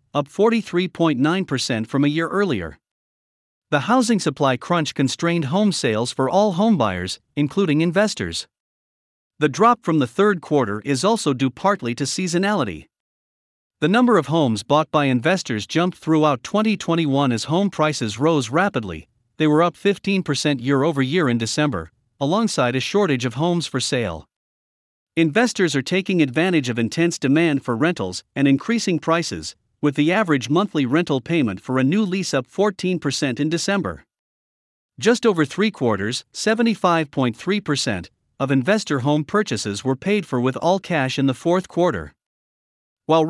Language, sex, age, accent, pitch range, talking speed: English, male, 50-69, American, 130-180 Hz, 145 wpm